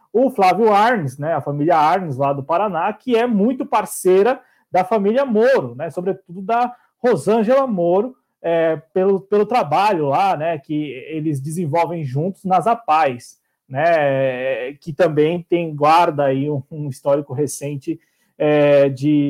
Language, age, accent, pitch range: Portuguese, 20-39, Brazilian, 165-230 Hz